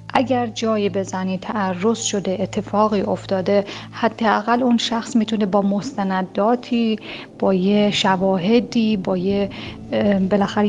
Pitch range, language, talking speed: 195-240 Hz, Persian, 105 wpm